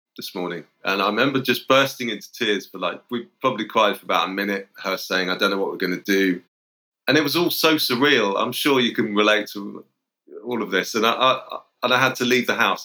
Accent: British